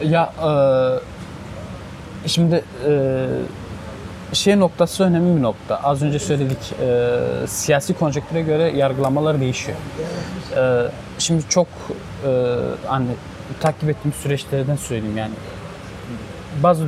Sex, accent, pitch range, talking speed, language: male, native, 110-150 Hz, 105 wpm, Turkish